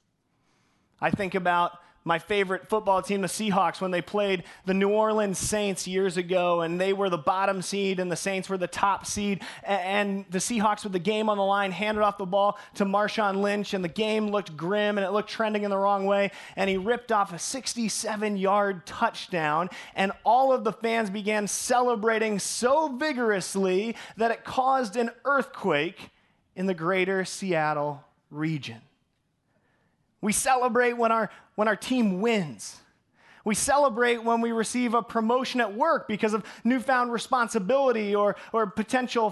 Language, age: English, 30-49